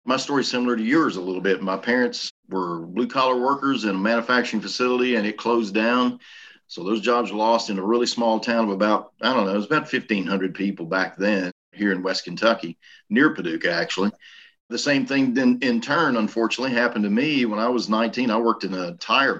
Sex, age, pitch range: male, 50-69, 105-130 Hz